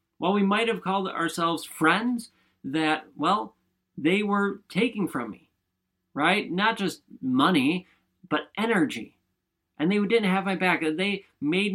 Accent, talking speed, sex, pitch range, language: American, 145 wpm, male, 145-220 Hz, English